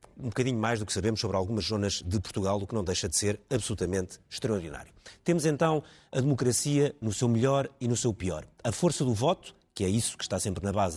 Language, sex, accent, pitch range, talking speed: Portuguese, male, Portuguese, 100-125 Hz, 230 wpm